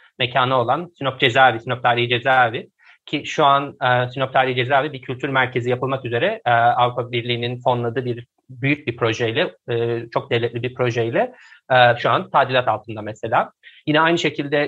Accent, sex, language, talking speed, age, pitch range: native, male, Turkish, 170 wpm, 30-49, 120-135 Hz